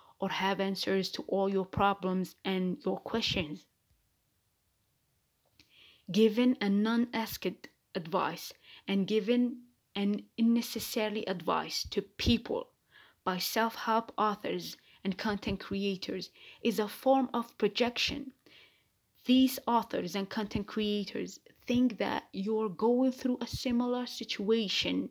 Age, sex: 20-39, female